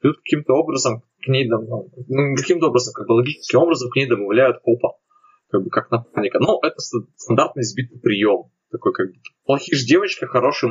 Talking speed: 165 wpm